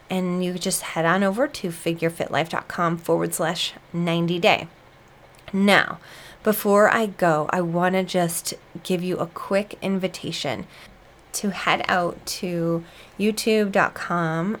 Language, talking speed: English, 120 wpm